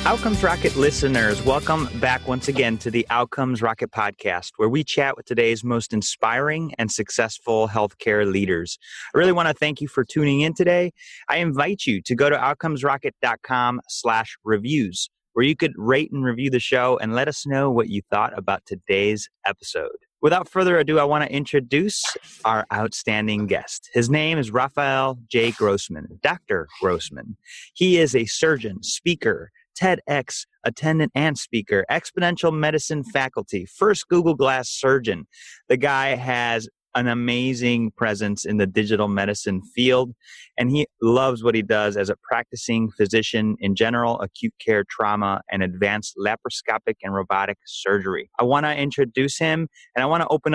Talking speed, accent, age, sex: 160 wpm, American, 30-49, male